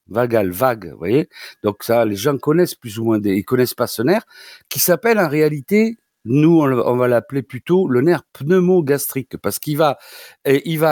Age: 60-79